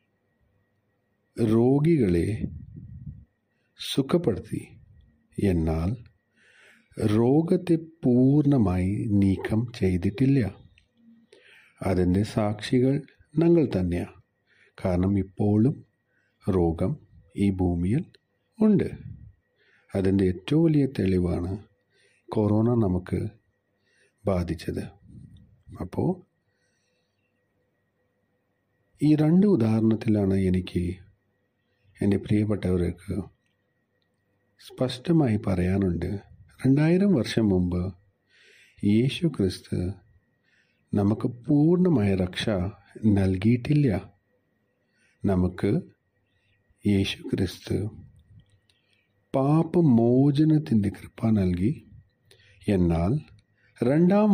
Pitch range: 95-120 Hz